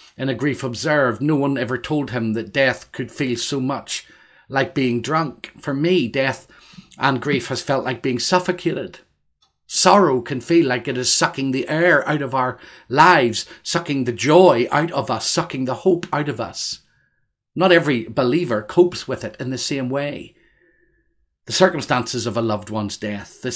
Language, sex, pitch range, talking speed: English, male, 125-165 Hz, 180 wpm